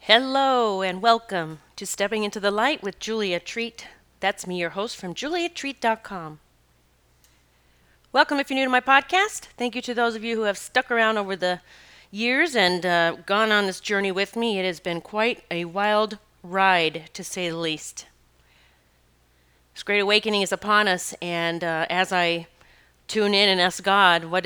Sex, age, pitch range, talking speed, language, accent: female, 40-59, 160-205 Hz, 175 wpm, English, American